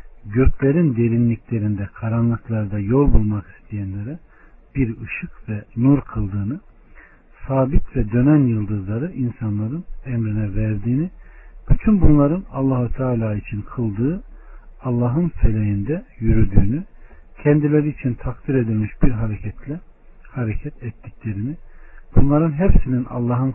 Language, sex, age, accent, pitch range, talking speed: Turkish, male, 60-79, native, 105-145 Hz, 95 wpm